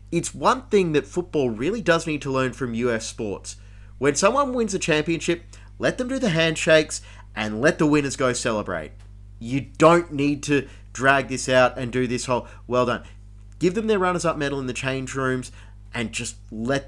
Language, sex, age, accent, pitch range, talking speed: English, male, 30-49, Australian, 105-145 Hz, 190 wpm